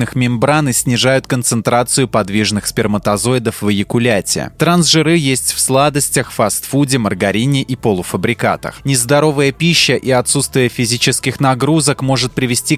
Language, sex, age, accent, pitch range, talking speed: Russian, male, 20-39, native, 115-145 Hz, 110 wpm